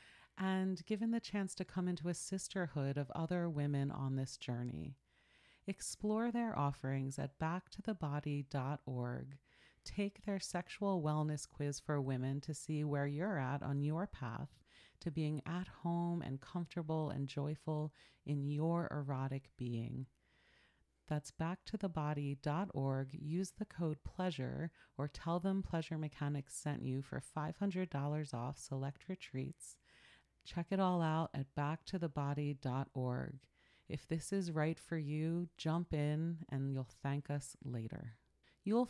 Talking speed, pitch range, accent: 130 wpm, 140-180 Hz, American